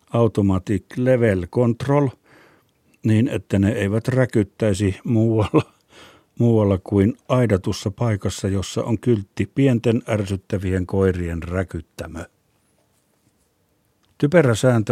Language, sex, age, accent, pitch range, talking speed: Finnish, male, 60-79, native, 95-115 Hz, 85 wpm